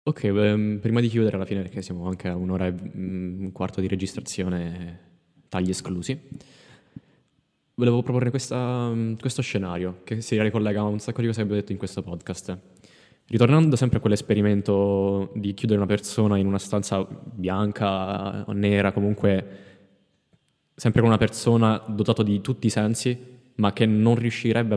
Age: 20-39